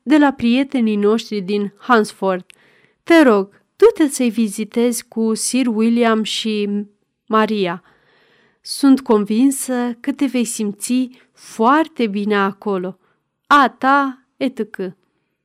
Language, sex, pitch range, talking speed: Romanian, female, 210-260 Hz, 110 wpm